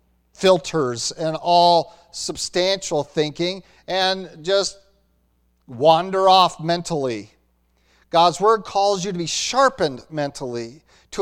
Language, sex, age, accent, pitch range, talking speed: English, male, 50-69, American, 145-195 Hz, 100 wpm